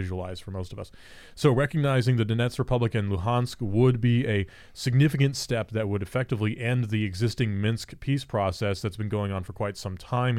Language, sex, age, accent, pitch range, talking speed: English, male, 30-49, American, 95-120 Hz, 195 wpm